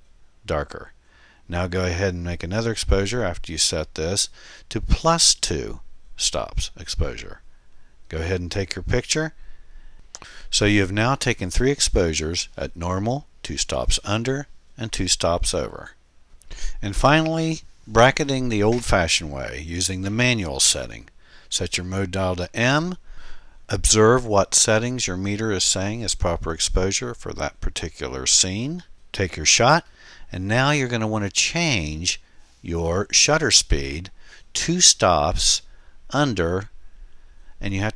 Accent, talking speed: American, 140 wpm